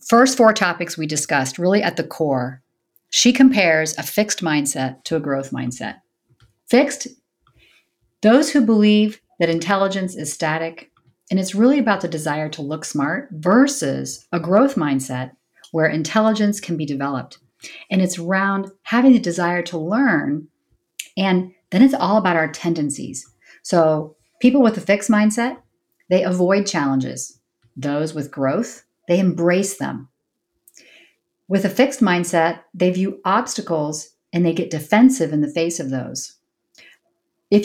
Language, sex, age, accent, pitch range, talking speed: English, female, 40-59, American, 155-210 Hz, 145 wpm